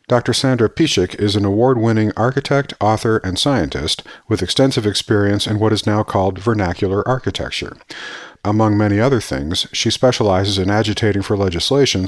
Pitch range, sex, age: 100-120 Hz, male, 50-69